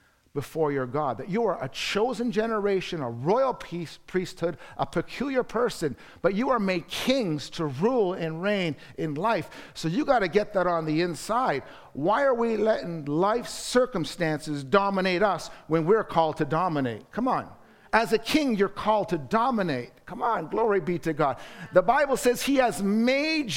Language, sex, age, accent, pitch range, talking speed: English, male, 50-69, American, 165-220 Hz, 180 wpm